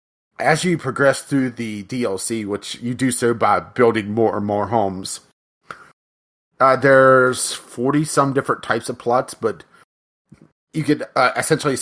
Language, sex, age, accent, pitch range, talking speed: English, male, 30-49, American, 110-135 Hz, 140 wpm